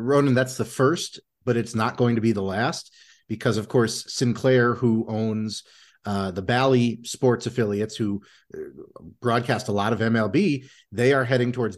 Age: 40-59